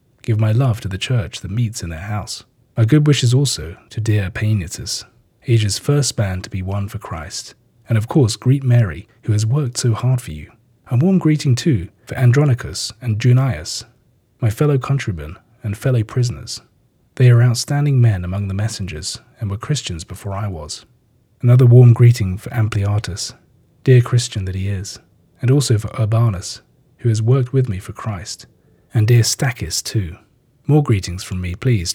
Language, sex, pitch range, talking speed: English, male, 105-125 Hz, 180 wpm